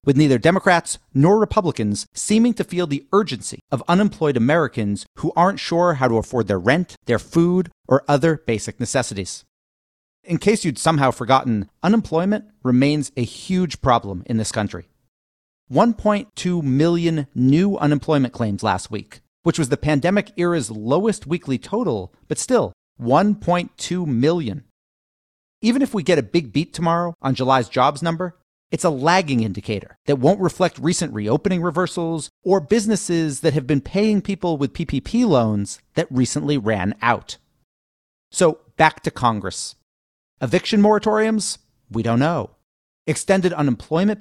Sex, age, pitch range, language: male, 40-59, 120-180 Hz, English